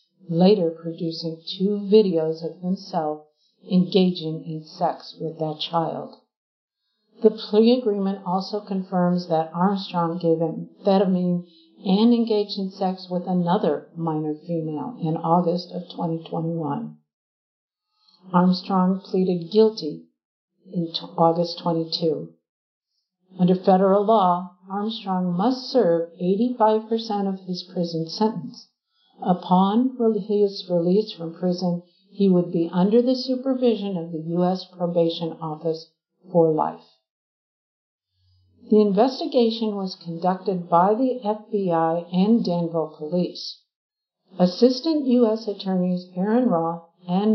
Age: 60-79